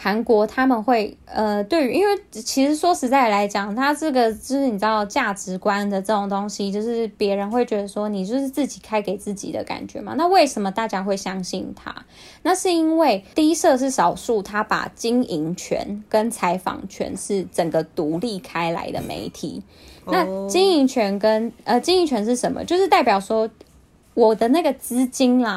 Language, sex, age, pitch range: Chinese, female, 10-29, 195-260 Hz